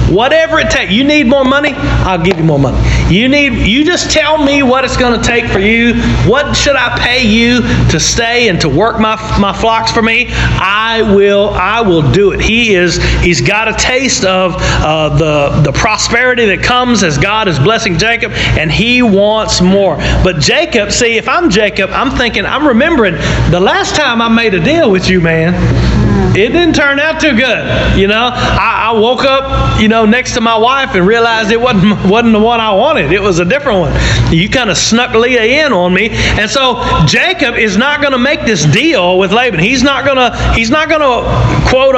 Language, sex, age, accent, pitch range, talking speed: English, male, 40-59, American, 185-255 Hz, 215 wpm